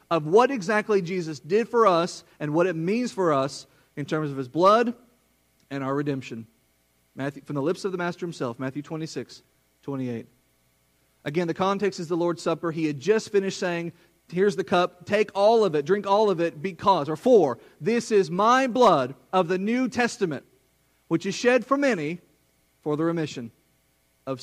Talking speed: 185 wpm